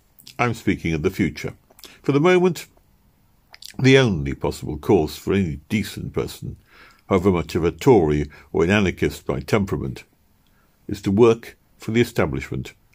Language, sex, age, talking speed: English, male, 60-79, 150 wpm